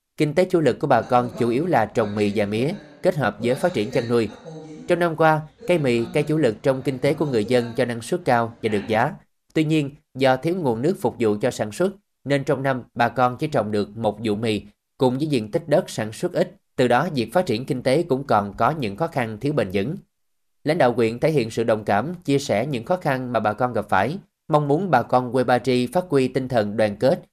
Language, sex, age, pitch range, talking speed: Vietnamese, male, 20-39, 110-145 Hz, 260 wpm